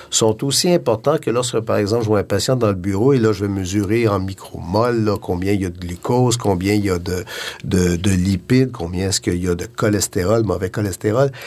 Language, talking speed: French, 230 wpm